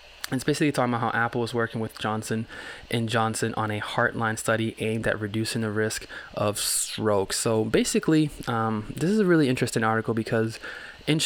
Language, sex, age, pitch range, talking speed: English, male, 20-39, 105-120 Hz, 180 wpm